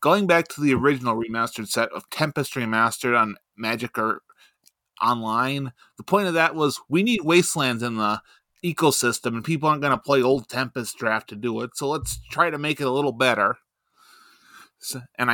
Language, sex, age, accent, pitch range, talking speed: English, male, 20-39, American, 120-155 Hz, 185 wpm